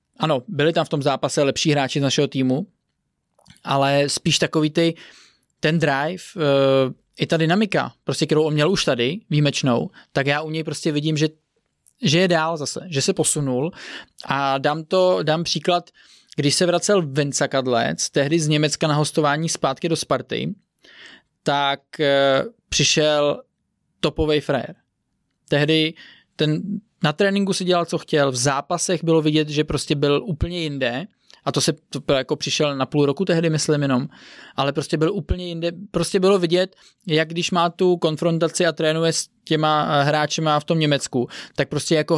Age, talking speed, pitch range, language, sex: 20-39, 165 wpm, 145-170 Hz, Czech, male